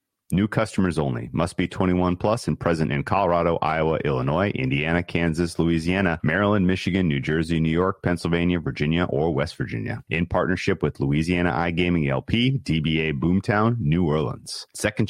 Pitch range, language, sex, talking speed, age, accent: 75-95 Hz, English, male, 150 wpm, 30-49, American